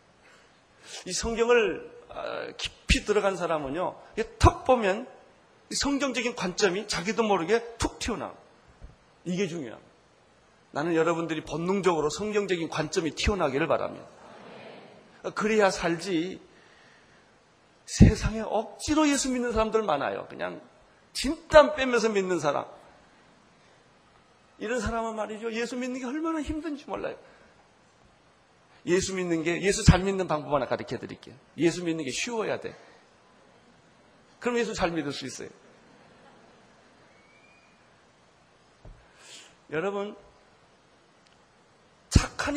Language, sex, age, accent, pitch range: Korean, male, 40-59, native, 170-245 Hz